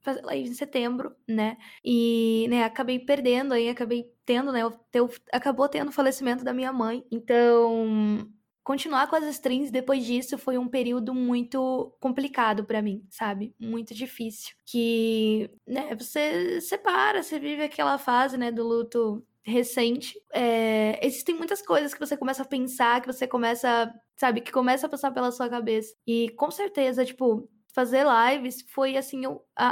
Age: 10-29